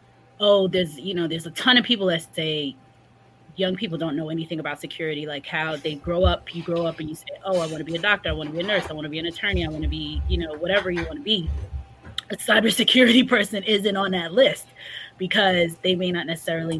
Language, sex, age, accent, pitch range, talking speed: English, female, 20-39, American, 160-200 Hz, 255 wpm